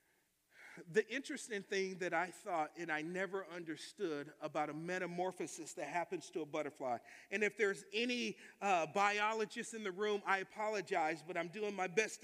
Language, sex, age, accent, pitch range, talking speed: English, male, 40-59, American, 195-255 Hz, 165 wpm